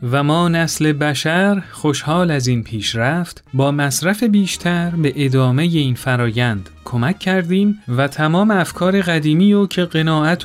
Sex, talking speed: male, 140 wpm